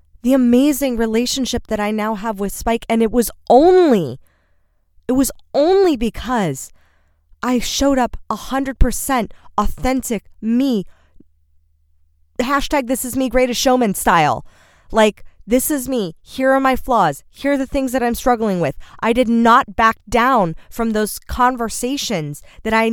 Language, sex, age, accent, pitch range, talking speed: English, female, 20-39, American, 160-250 Hz, 145 wpm